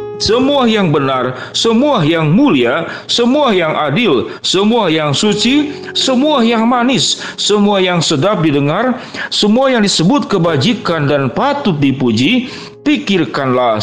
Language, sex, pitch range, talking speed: Indonesian, male, 150-225 Hz, 115 wpm